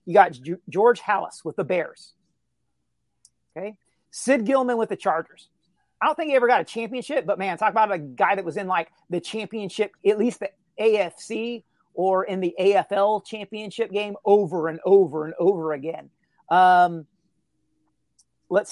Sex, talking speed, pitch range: male, 165 wpm, 170-220 Hz